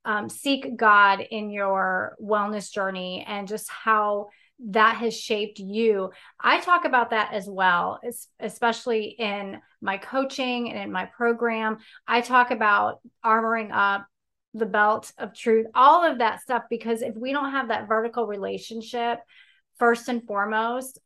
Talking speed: 150 wpm